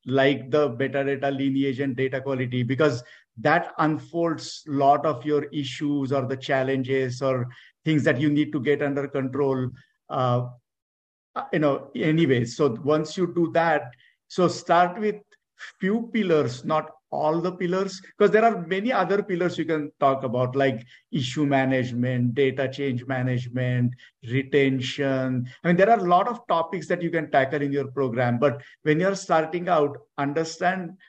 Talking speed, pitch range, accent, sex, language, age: 160 wpm, 135-170 Hz, Indian, male, English, 50-69